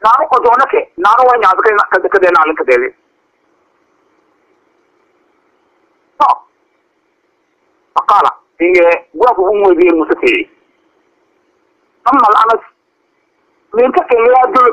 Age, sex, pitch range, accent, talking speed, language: 50-69, male, 240-380 Hz, Indian, 120 wpm, English